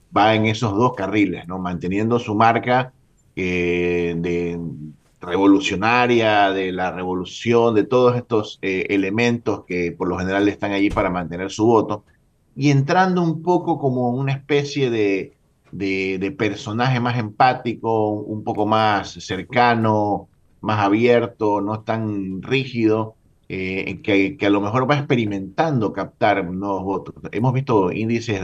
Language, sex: Spanish, male